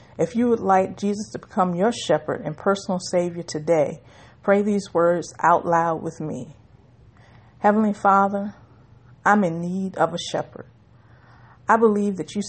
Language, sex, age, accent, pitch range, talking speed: English, female, 50-69, American, 120-195 Hz, 155 wpm